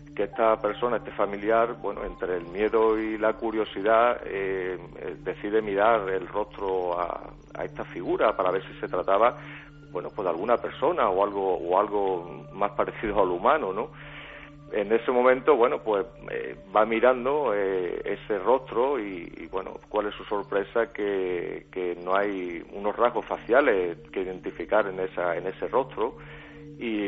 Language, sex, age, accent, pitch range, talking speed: Spanish, male, 40-59, Spanish, 95-120 Hz, 160 wpm